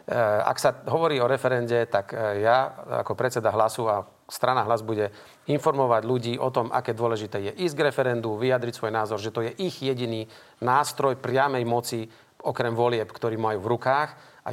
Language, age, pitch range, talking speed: Slovak, 40-59, 115-135 Hz, 175 wpm